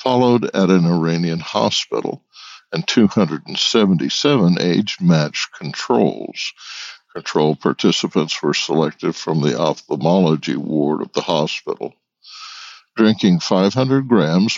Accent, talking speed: American, 95 wpm